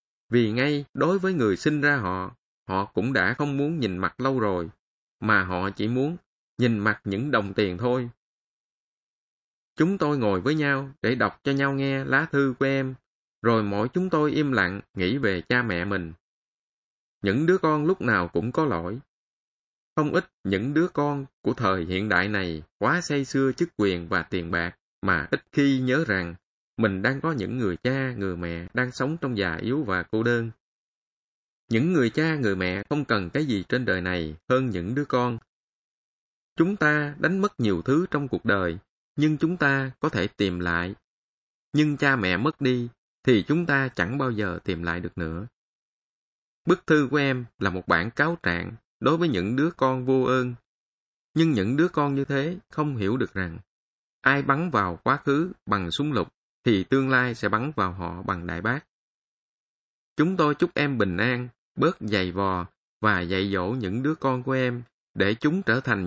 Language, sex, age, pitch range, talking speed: Vietnamese, male, 20-39, 95-145 Hz, 190 wpm